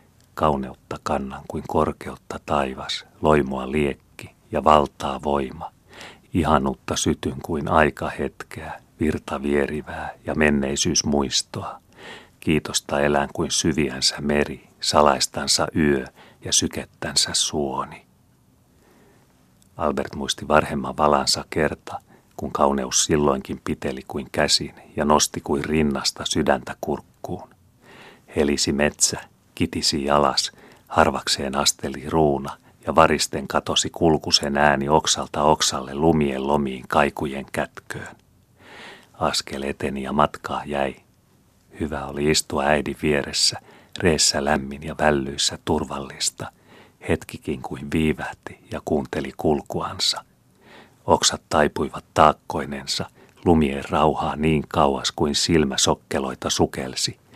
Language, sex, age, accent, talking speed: Finnish, male, 40-59, native, 100 wpm